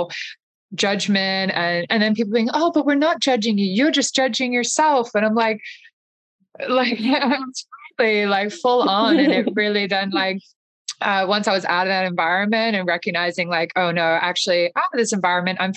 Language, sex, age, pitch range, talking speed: English, female, 20-39, 165-200 Hz, 185 wpm